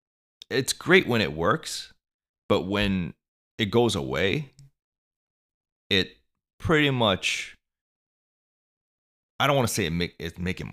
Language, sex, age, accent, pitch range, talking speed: English, male, 30-49, American, 70-105 Hz, 110 wpm